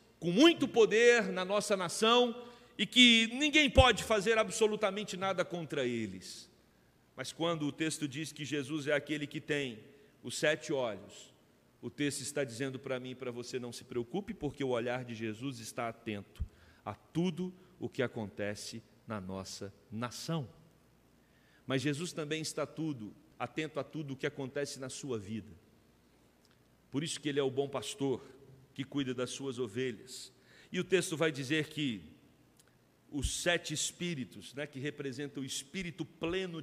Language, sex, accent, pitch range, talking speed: Portuguese, male, Brazilian, 125-175 Hz, 160 wpm